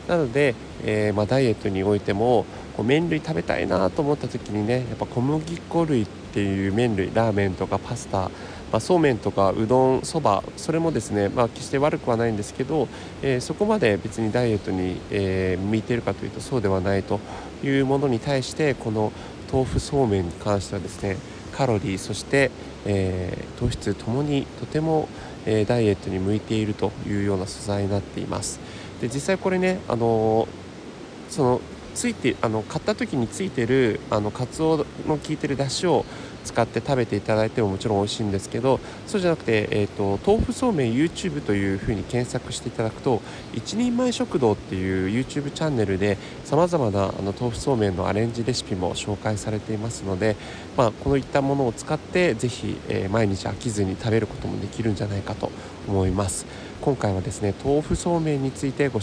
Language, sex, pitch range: Japanese, male, 100-140 Hz